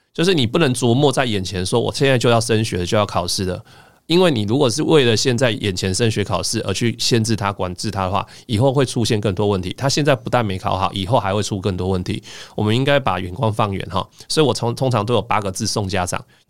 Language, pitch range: Chinese, 95-120 Hz